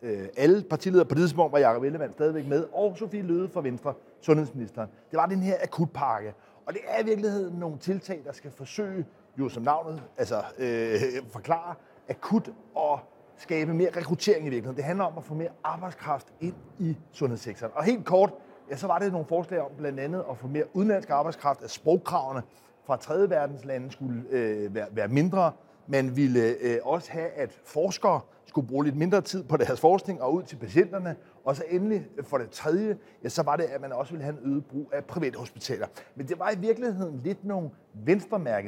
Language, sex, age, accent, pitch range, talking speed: Danish, male, 30-49, native, 140-190 Hz, 195 wpm